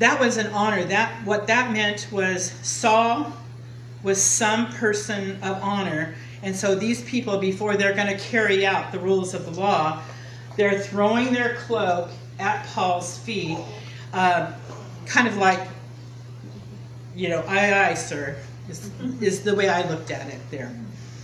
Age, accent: 40-59, American